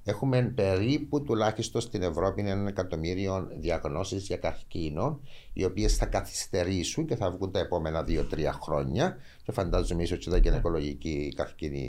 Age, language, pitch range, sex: 60-79, Greek, 75-105 Hz, male